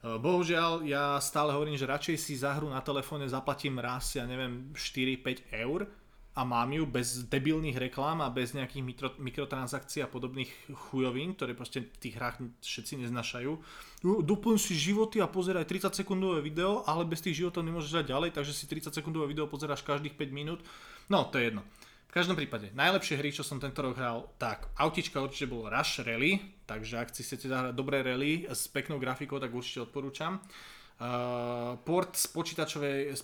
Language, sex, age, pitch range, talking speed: Slovak, male, 20-39, 125-155 Hz, 175 wpm